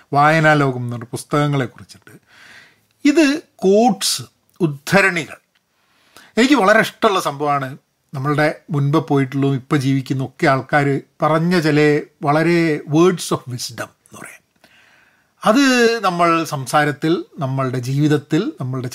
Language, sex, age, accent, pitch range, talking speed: Malayalam, male, 40-59, native, 135-175 Hz, 100 wpm